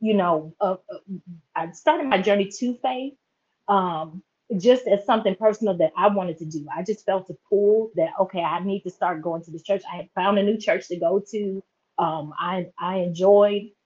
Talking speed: 210 wpm